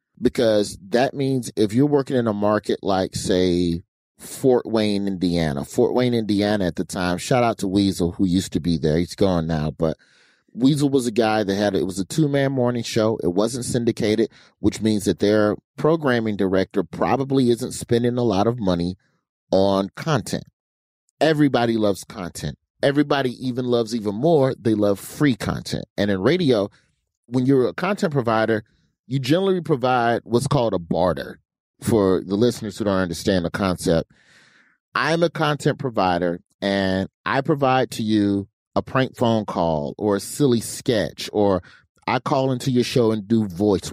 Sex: male